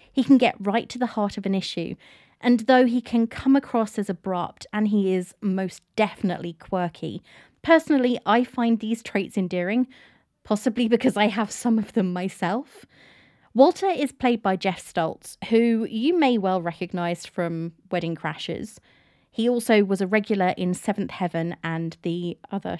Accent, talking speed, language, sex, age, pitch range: British, 165 wpm, English, female, 30-49, 175-235 Hz